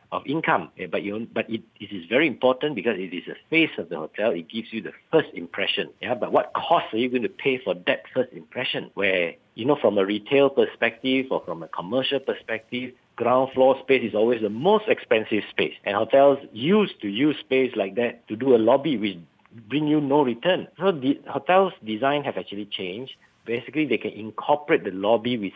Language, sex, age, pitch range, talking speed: English, male, 50-69, 105-140 Hz, 210 wpm